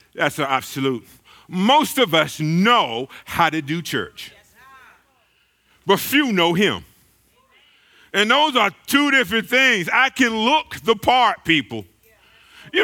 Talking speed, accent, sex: 130 wpm, American, male